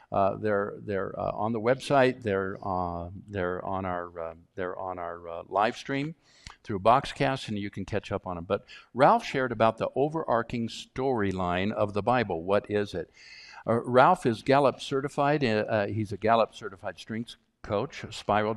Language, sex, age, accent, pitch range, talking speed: English, male, 60-79, American, 95-120 Hz, 175 wpm